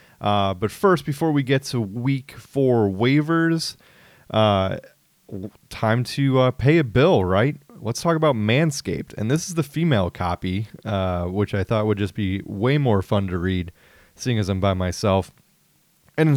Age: 30-49